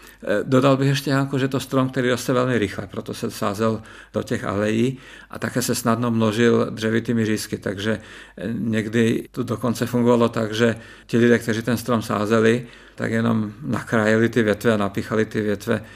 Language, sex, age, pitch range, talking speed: Czech, male, 50-69, 105-120 Hz, 175 wpm